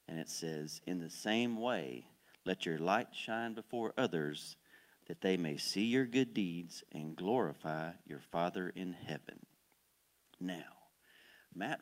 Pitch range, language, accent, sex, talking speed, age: 90-135 Hz, English, American, male, 140 wpm, 40-59